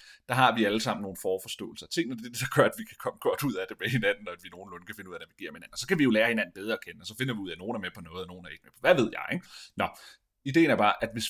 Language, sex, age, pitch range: Danish, male, 30-49, 95-135 Hz